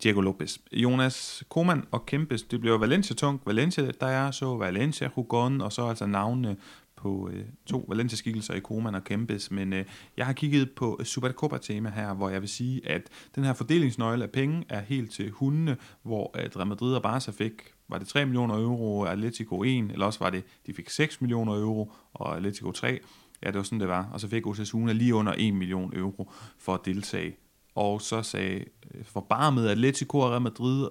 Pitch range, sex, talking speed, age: 100-125 Hz, male, 195 wpm, 30-49